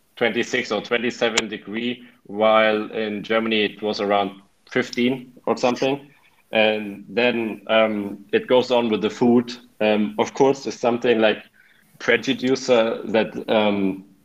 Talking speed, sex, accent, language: 130 wpm, male, German, Italian